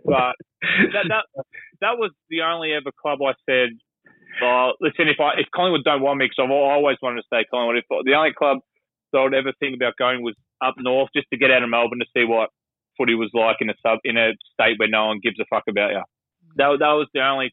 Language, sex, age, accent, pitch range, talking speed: English, male, 20-39, Australian, 115-135 Hz, 245 wpm